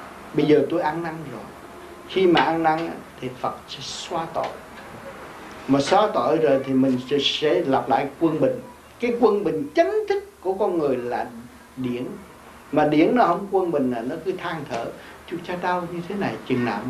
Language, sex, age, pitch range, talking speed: Vietnamese, male, 60-79, 150-225 Hz, 195 wpm